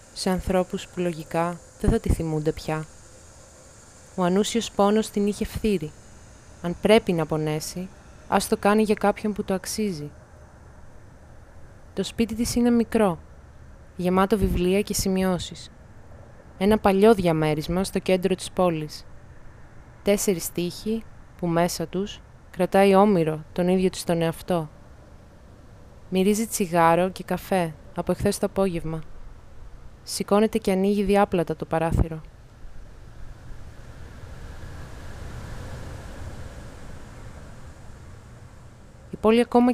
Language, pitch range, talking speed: Greek, 155-205 Hz, 110 wpm